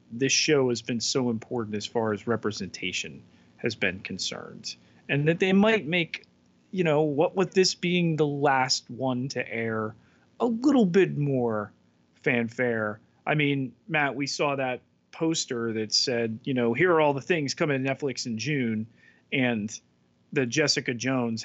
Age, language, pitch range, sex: 30-49, English, 115-145 Hz, male